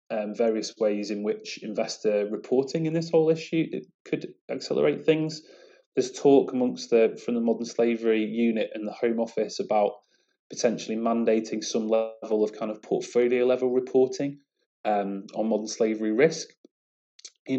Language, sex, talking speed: English, male, 155 wpm